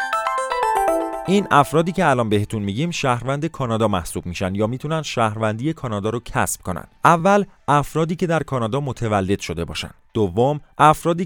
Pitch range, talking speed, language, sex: 105-150 Hz, 145 wpm, Persian, male